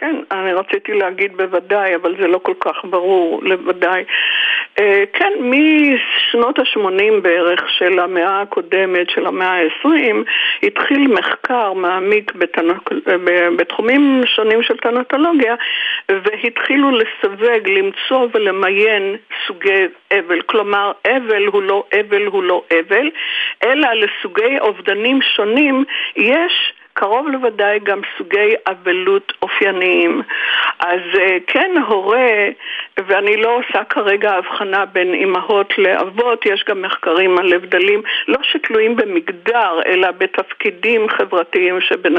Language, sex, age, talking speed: Hebrew, female, 50-69, 110 wpm